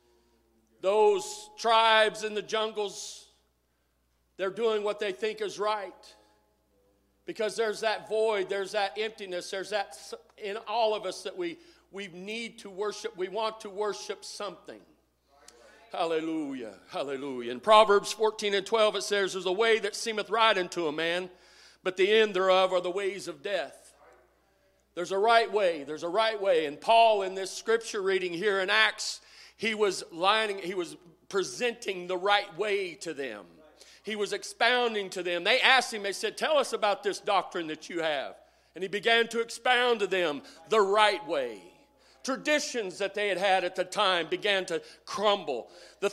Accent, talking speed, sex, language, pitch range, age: American, 170 wpm, male, English, 185-230 Hz, 40-59